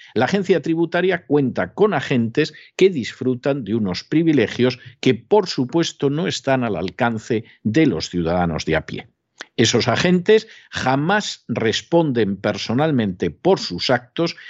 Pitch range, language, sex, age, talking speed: 115-170 Hz, Spanish, male, 50-69, 135 wpm